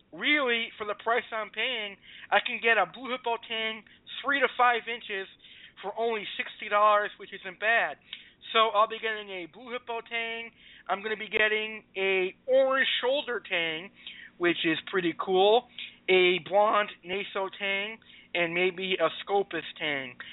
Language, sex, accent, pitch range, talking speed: English, male, American, 185-225 Hz, 155 wpm